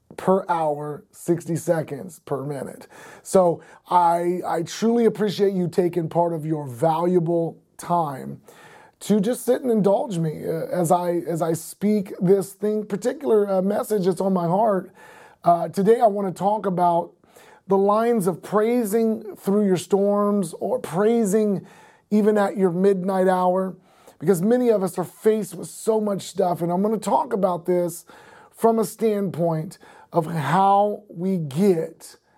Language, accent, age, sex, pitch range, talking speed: English, American, 30-49, male, 175-210 Hz, 150 wpm